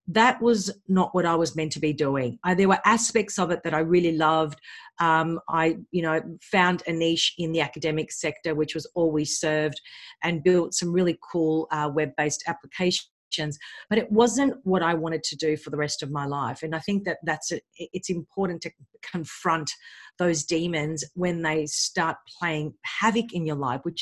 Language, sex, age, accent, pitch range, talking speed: English, female, 40-59, Australian, 160-210 Hz, 195 wpm